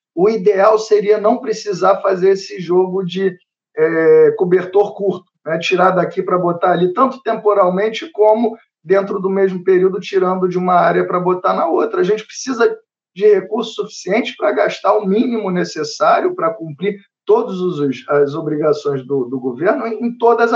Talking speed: 155 wpm